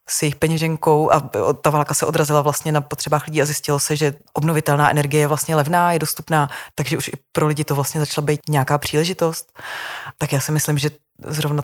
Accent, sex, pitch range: native, female, 145-155 Hz